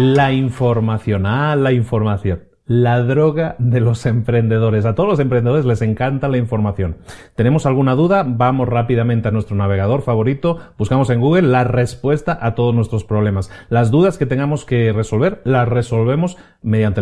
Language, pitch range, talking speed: Spanish, 110-135 Hz, 165 wpm